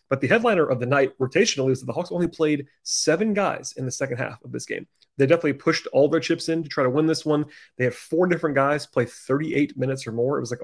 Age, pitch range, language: 30-49, 120-140 Hz, English